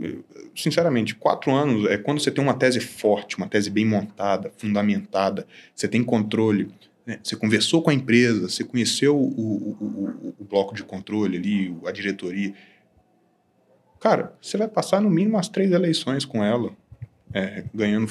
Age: 20-39